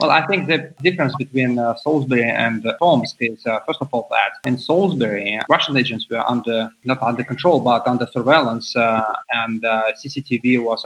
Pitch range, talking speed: 115-140 Hz, 190 wpm